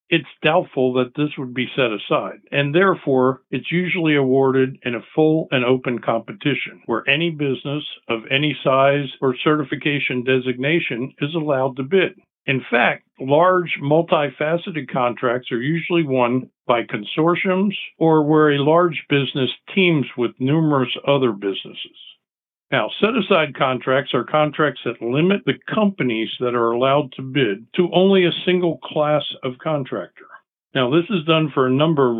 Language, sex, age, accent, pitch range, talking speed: English, male, 60-79, American, 130-165 Hz, 150 wpm